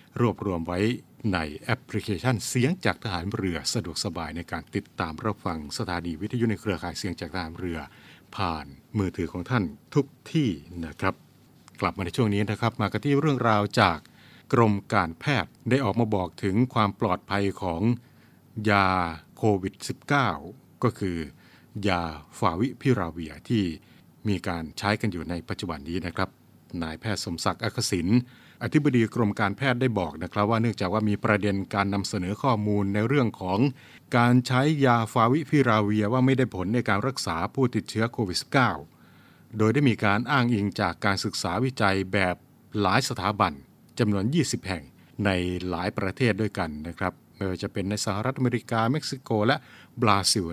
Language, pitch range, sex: Thai, 90-115 Hz, male